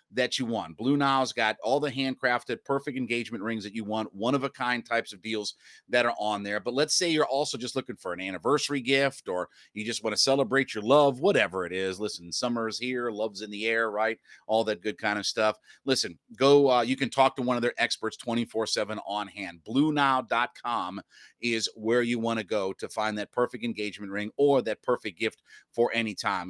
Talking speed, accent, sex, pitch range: 220 wpm, American, male, 110-140 Hz